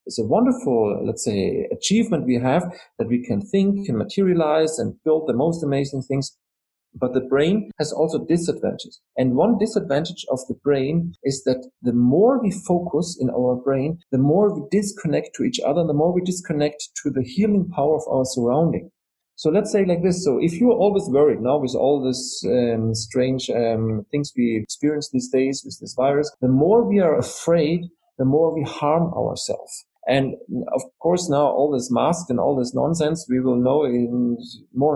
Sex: male